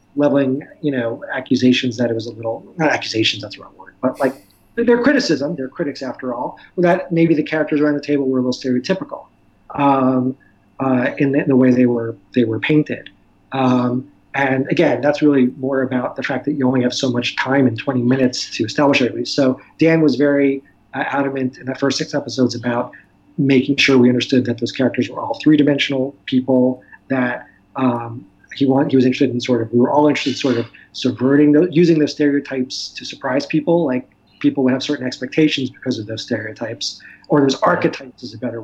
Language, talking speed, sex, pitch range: English, 205 wpm, male, 125-145 Hz